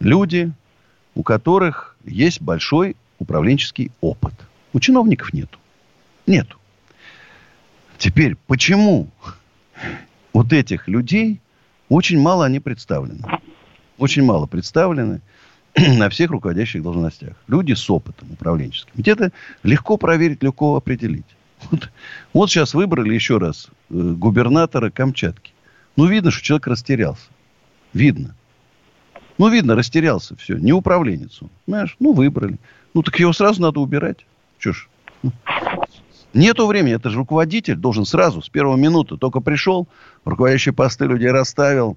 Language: Russian